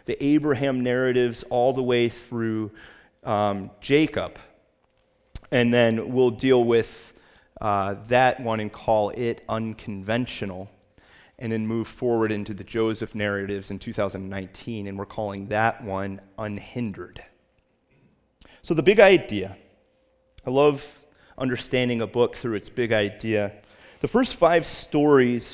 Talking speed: 125 wpm